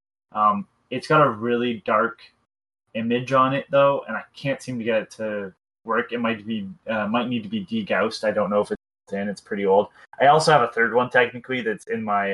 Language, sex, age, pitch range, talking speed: English, male, 20-39, 105-130 Hz, 230 wpm